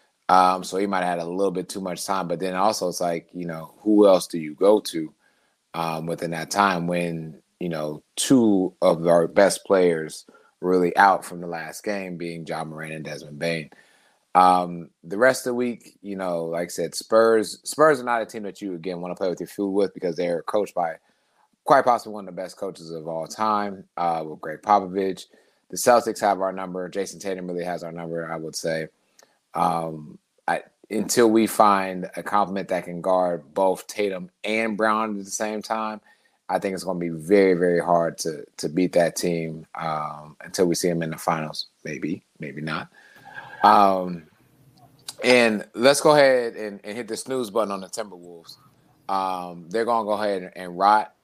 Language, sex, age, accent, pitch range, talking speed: English, male, 30-49, American, 85-105 Hz, 200 wpm